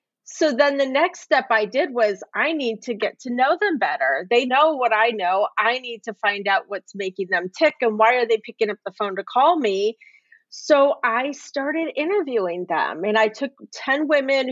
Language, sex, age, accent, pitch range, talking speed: English, female, 30-49, American, 205-265 Hz, 210 wpm